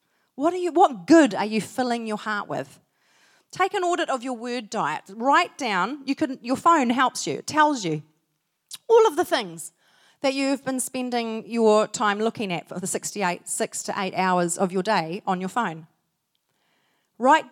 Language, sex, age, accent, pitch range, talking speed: English, female, 30-49, Australian, 190-305 Hz, 185 wpm